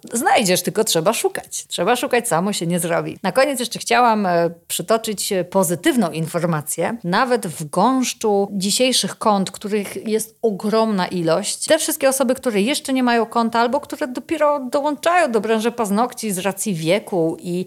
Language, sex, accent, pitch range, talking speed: Polish, female, native, 180-250 Hz, 155 wpm